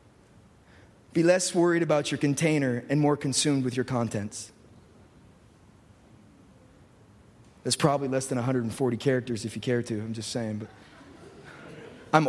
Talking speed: 125 wpm